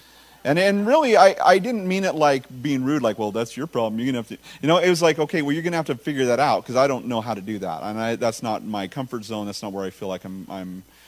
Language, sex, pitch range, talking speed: English, male, 120-165 Hz, 320 wpm